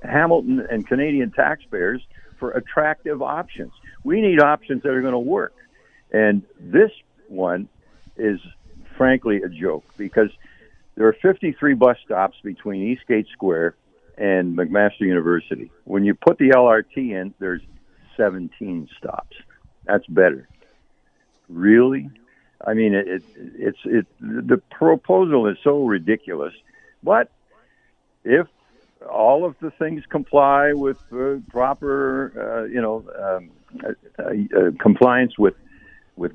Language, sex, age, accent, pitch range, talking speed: English, male, 60-79, American, 100-145 Hz, 125 wpm